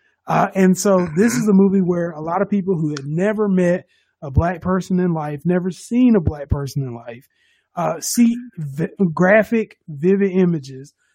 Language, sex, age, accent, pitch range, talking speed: English, male, 30-49, American, 165-195 Hz, 185 wpm